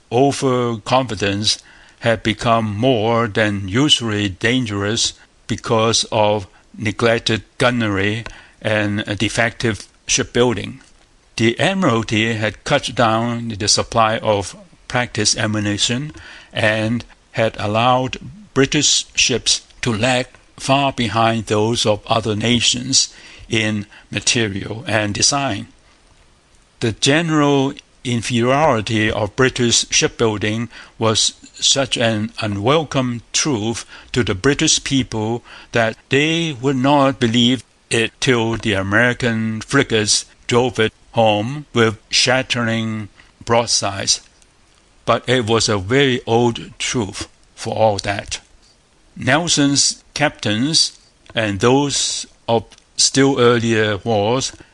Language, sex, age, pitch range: Korean, male, 60-79, 110-125 Hz